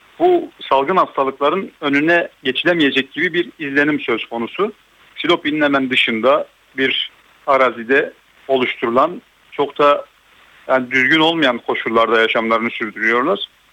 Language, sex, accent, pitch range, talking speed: Turkish, male, native, 130-170 Hz, 105 wpm